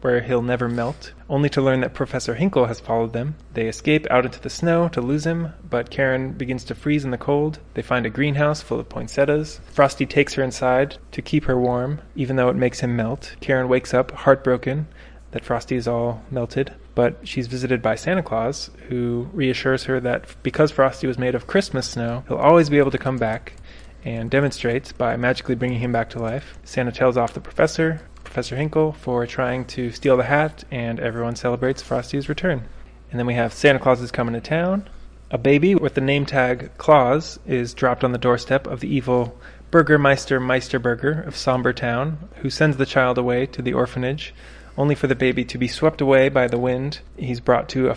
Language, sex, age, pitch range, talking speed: English, male, 20-39, 120-140 Hz, 210 wpm